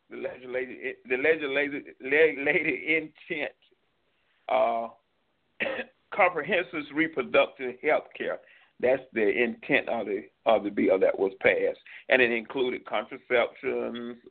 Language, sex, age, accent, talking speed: English, male, 40-59, American, 110 wpm